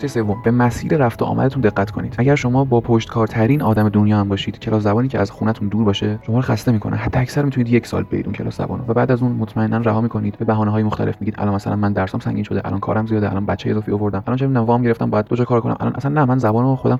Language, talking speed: Persian, 270 wpm